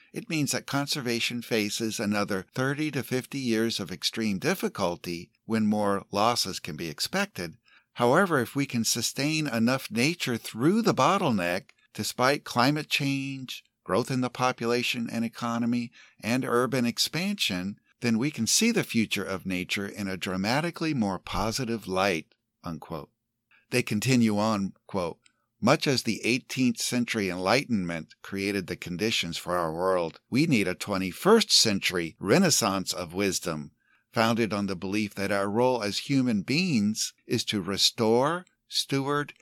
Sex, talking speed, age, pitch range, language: male, 145 wpm, 60-79, 100-130 Hz, English